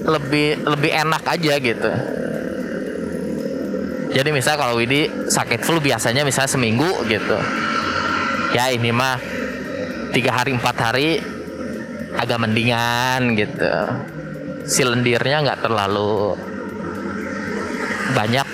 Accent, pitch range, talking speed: native, 110-155 Hz, 95 wpm